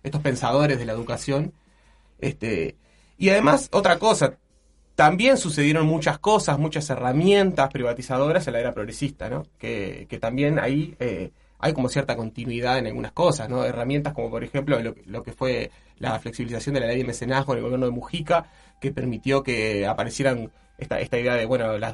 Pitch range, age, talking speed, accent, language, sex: 115-145 Hz, 20-39, 180 wpm, Argentinian, Spanish, male